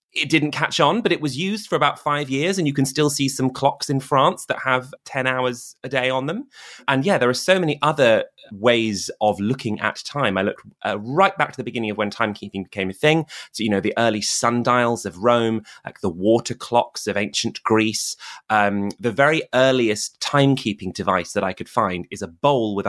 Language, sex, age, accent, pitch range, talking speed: English, male, 30-49, British, 105-140 Hz, 220 wpm